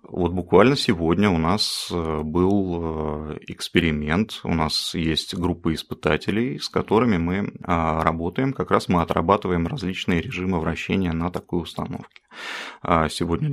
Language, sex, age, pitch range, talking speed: Russian, male, 30-49, 80-100 Hz, 115 wpm